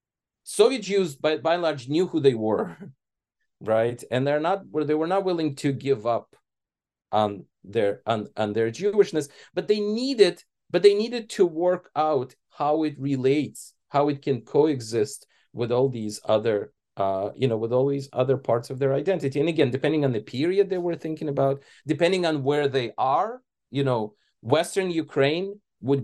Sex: male